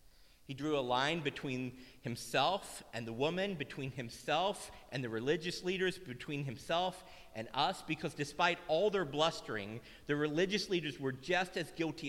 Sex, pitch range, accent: male, 135-180 Hz, American